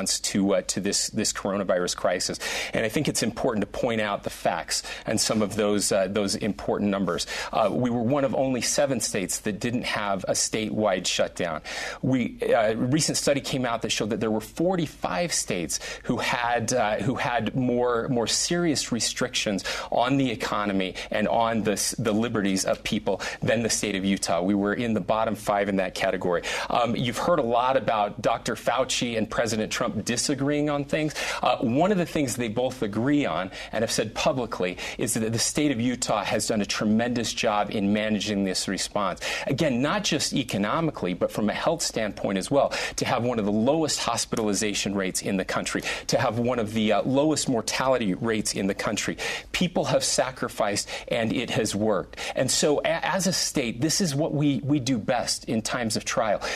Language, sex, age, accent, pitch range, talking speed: English, male, 30-49, American, 105-140 Hz, 195 wpm